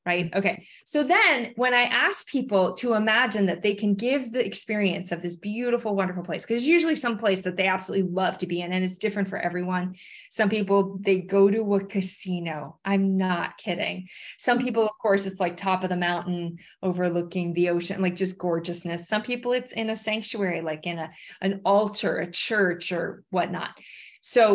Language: English